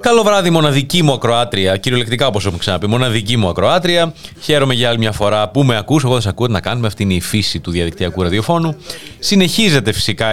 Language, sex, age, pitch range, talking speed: Greek, male, 30-49, 100-150 Hz, 205 wpm